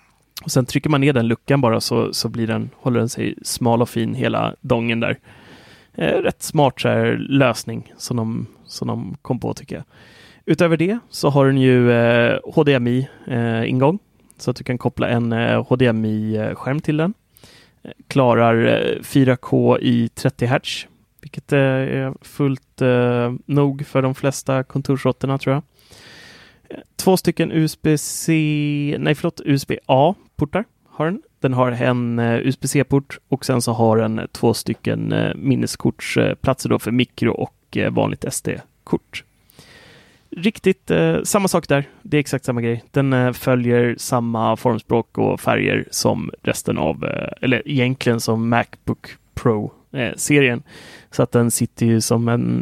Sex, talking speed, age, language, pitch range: male, 155 wpm, 30-49, English, 115-145 Hz